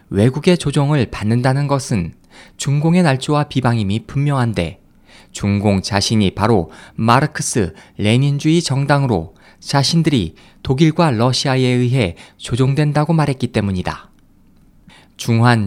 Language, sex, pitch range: Korean, male, 105-150 Hz